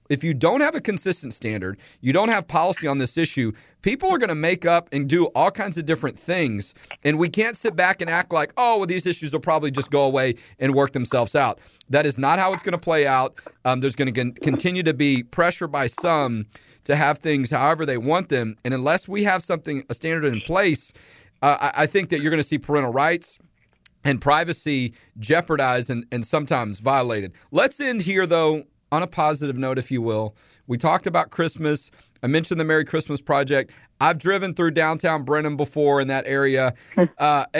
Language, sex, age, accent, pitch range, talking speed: English, male, 40-59, American, 130-170 Hz, 210 wpm